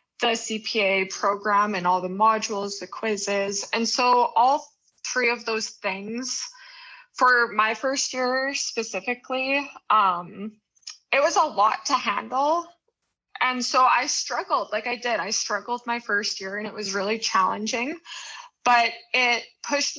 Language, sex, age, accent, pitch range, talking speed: English, female, 20-39, American, 205-255 Hz, 145 wpm